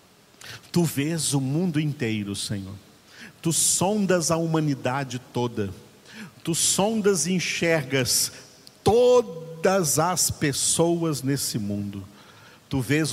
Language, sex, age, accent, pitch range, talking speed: Portuguese, male, 50-69, Brazilian, 125-165 Hz, 100 wpm